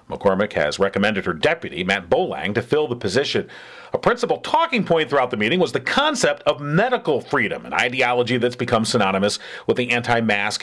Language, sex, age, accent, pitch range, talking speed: English, male, 40-59, American, 120-195 Hz, 185 wpm